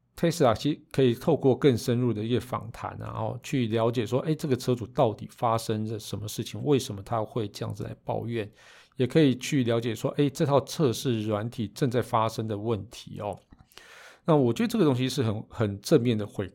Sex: male